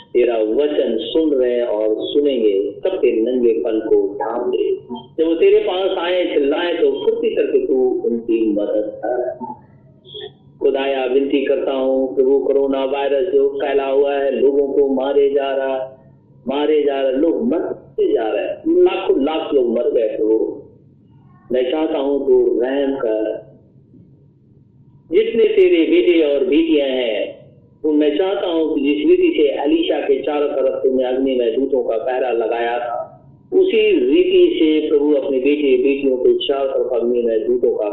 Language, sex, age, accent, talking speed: Hindi, male, 50-69, native, 150 wpm